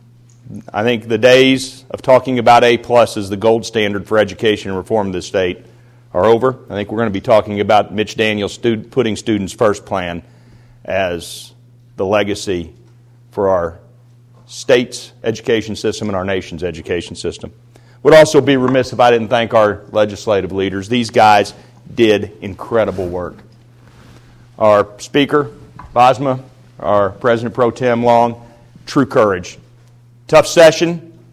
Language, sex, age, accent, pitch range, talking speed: English, male, 40-59, American, 110-125 Hz, 150 wpm